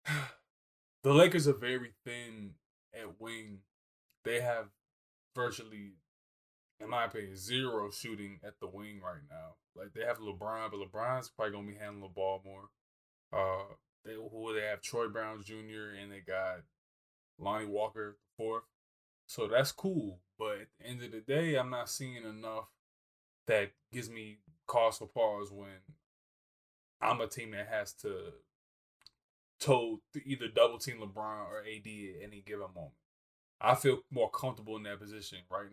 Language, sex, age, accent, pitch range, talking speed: English, male, 20-39, American, 100-130 Hz, 155 wpm